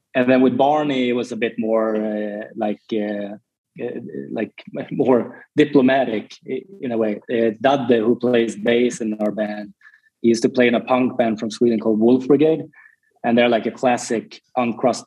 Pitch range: 110-130 Hz